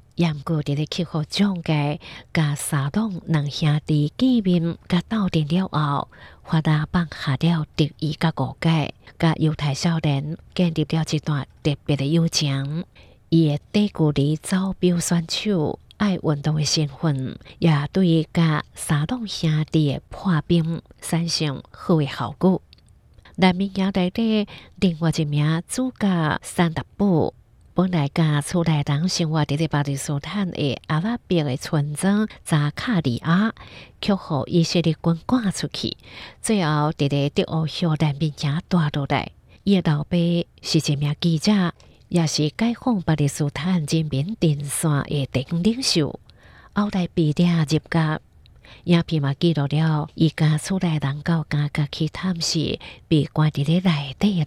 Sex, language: female, Chinese